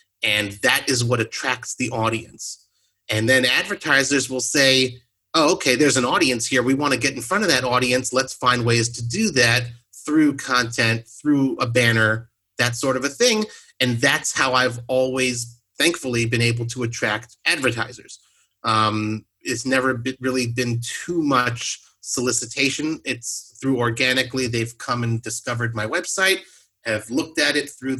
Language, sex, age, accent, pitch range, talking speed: English, male, 30-49, American, 110-130 Hz, 160 wpm